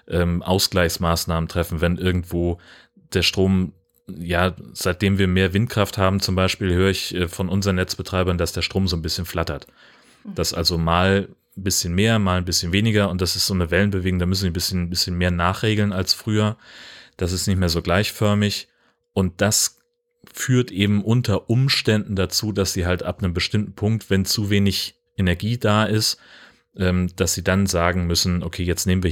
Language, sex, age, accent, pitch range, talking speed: German, male, 30-49, German, 85-100 Hz, 180 wpm